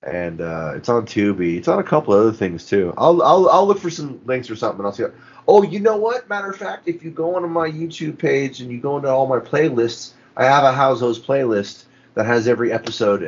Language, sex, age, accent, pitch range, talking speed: English, male, 30-49, American, 95-130 Hz, 260 wpm